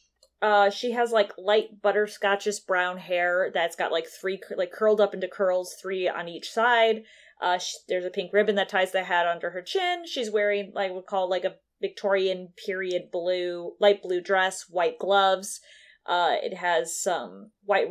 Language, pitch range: English, 180-215 Hz